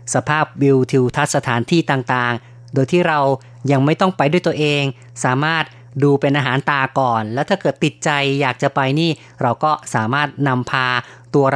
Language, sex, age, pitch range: Thai, female, 30-49, 130-155 Hz